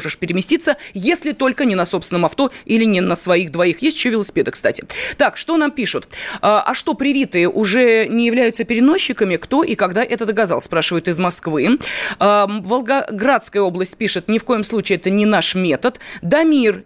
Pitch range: 190-245 Hz